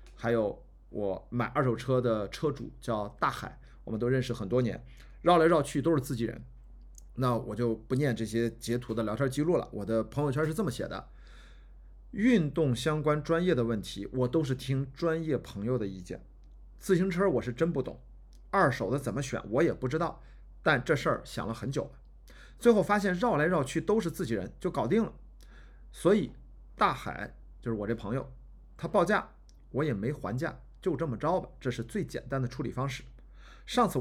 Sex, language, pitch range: male, Chinese, 115-155 Hz